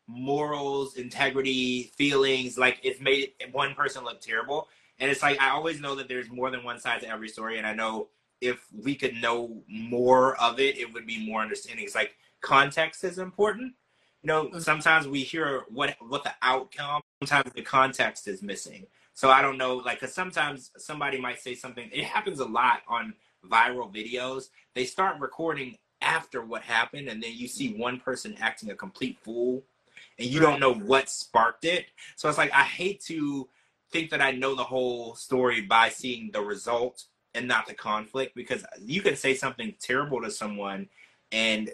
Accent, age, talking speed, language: American, 30-49, 185 wpm, English